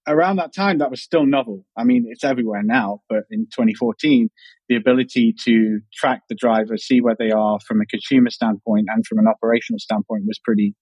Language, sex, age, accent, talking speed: English, male, 30-49, British, 200 wpm